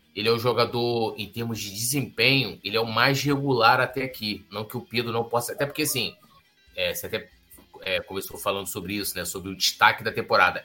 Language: Portuguese